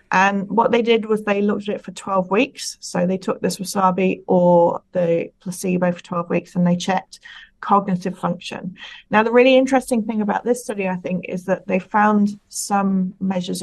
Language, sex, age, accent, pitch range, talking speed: English, female, 30-49, British, 180-210 Hz, 195 wpm